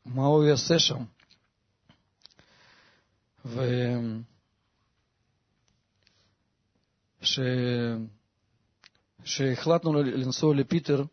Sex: male